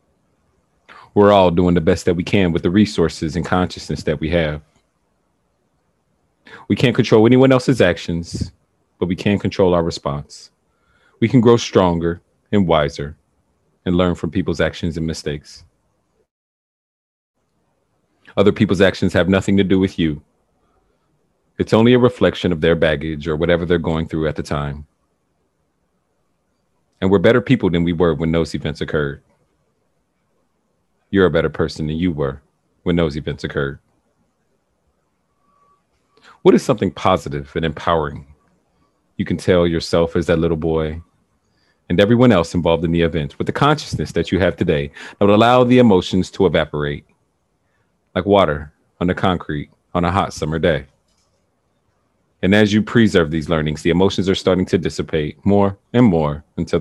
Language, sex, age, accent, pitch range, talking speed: English, male, 40-59, American, 80-95 Hz, 155 wpm